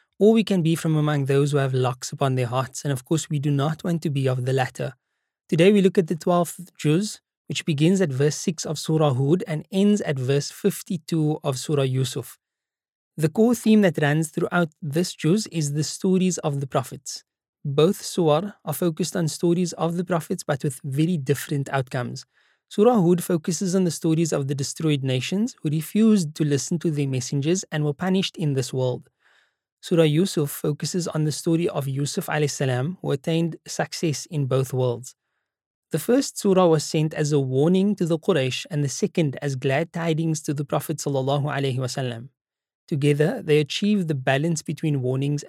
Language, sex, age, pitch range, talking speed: English, male, 20-39, 140-175 Hz, 185 wpm